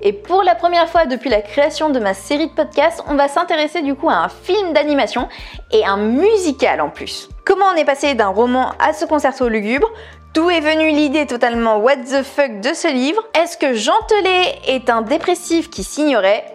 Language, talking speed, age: French, 205 wpm, 20-39